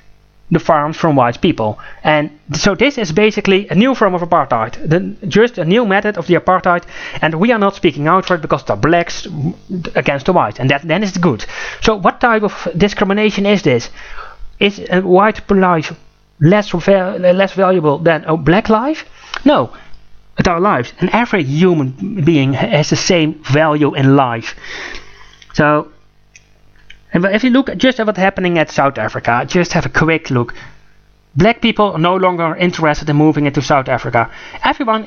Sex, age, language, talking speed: male, 30-49, English, 175 wpm